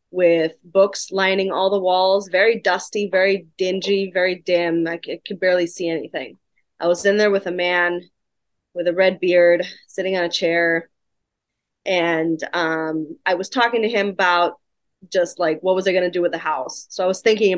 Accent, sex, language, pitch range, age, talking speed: American, female, English, 175-225 Hz, 20-39, 190 wpm